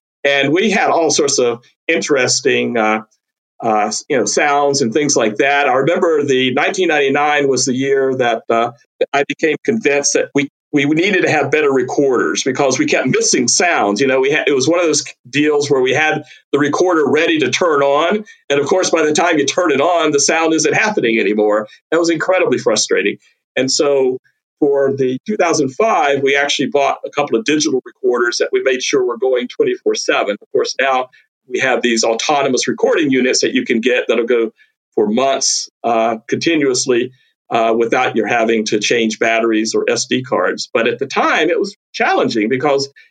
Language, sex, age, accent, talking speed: English, male, 50-69, American, 190 wpm